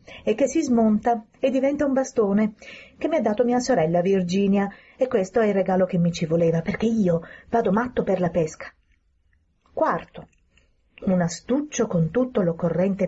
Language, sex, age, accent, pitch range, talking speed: Italian, female, 30-49, native, 175-250 Hz, 170 wpm